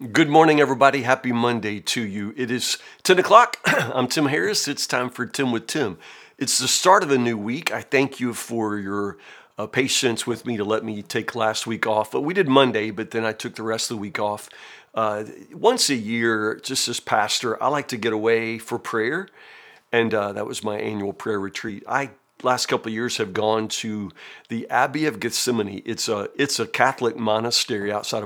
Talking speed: 210 wpm